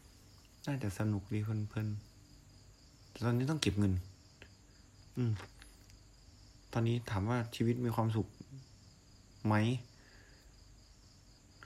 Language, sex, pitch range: Thai, male, 100-125 Hz